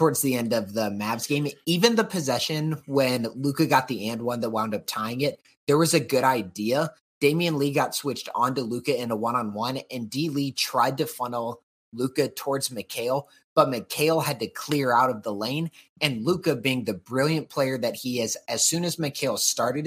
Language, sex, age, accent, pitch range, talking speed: English, male, 30-49, American, 120-160 Hz, 205 wpm